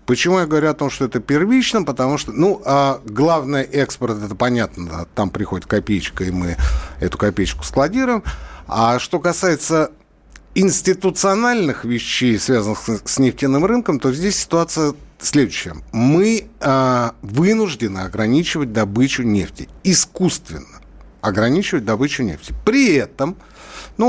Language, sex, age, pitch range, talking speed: Russian, male, 60-79, 115-175 Hz, 120 wpm